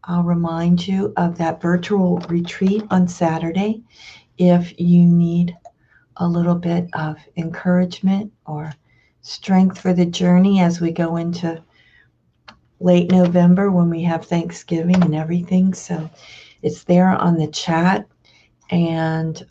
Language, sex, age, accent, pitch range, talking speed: English, female, 50-69, American, 150-175 Hz, 125 wpm